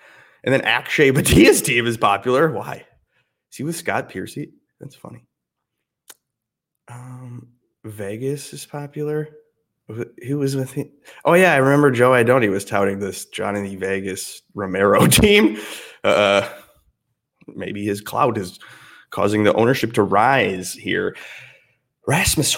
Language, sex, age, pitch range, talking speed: English, male, 20-39, 105-150 Hz, 130 wpm